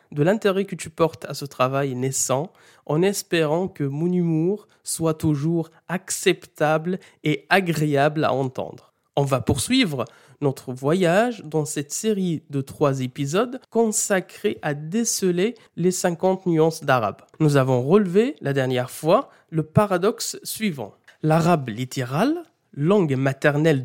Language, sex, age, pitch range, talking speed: French, male, 20-39, 145-210 Hz, 130 wpm